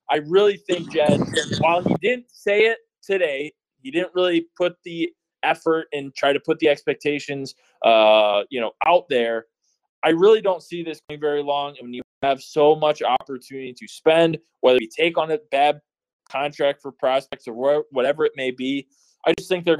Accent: American